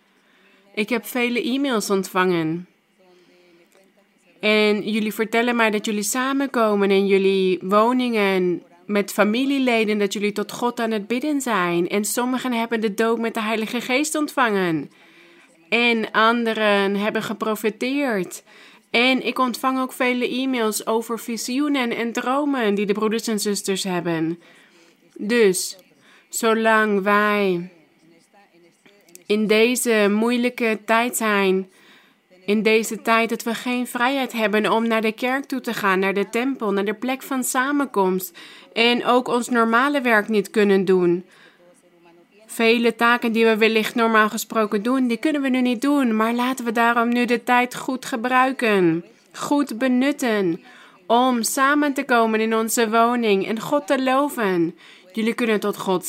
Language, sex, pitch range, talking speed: Dutch, female, 205-245 Hz, 145 wpm